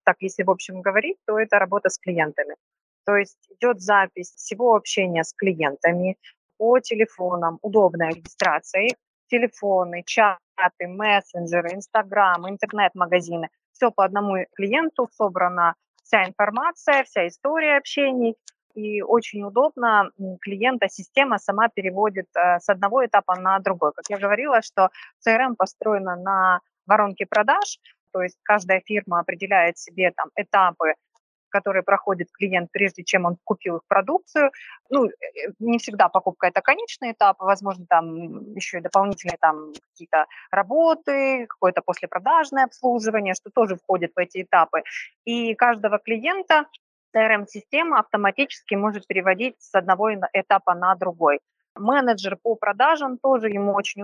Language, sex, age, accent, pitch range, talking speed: Ukrainian, female, 20-39, native, 185-230 Hz, 130 wpm